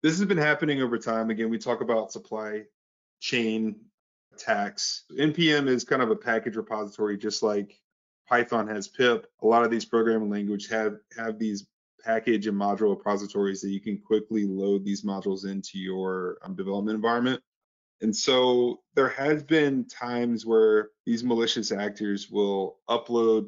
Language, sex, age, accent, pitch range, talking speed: English, male, 20-39, American, 105-120 Hz, 155 wpm